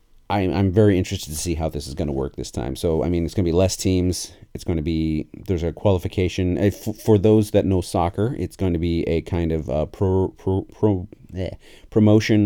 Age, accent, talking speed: 40-59, American, 230 wpm